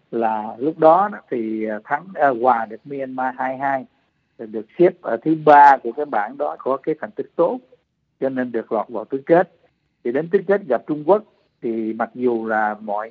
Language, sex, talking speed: Vietnamese, male, 195 wpm